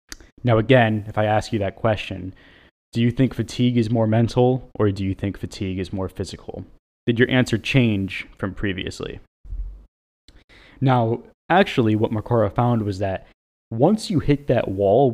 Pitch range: 95-120 Hz